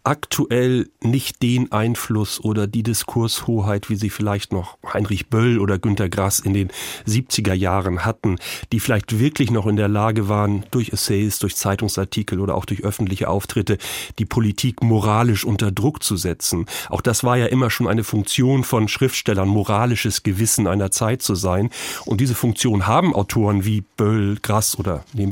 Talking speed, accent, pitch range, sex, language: 170 wpm, German, 105-125 Hz, male, German